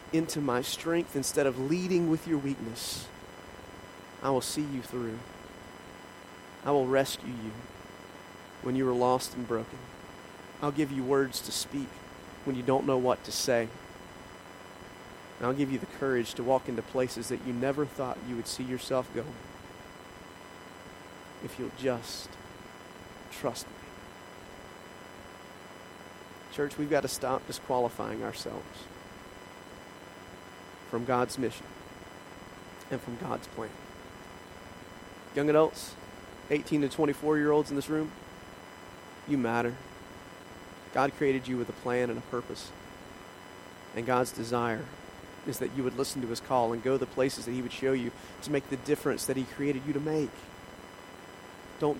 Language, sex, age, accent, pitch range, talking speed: English, male, 40-59, American, 90-135 Hz, 145 wpm